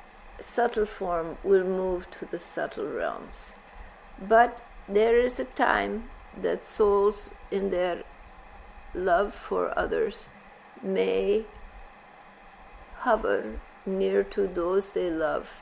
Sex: female